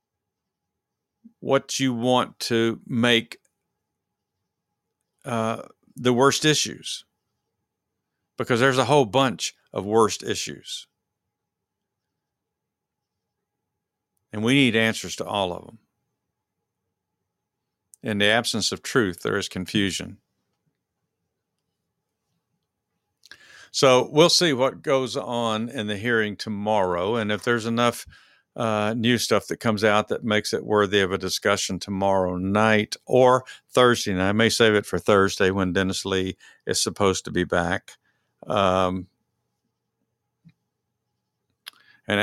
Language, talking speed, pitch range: English, 115 wpm, 95-115 Hz